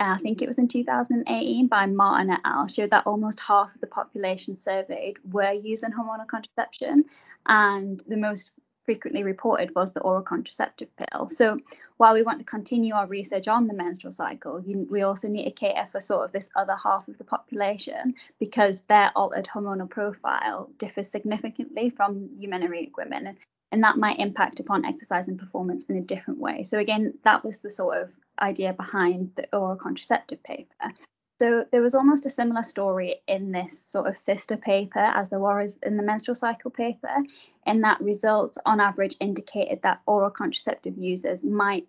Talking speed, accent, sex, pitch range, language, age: 180 wpm, British, female, 195-235 Hz, English, 20-39